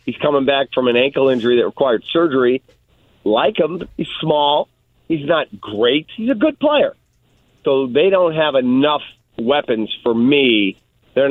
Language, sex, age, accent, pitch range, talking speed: English, male, 40-59, American, 120-145 Hz, 160 wpm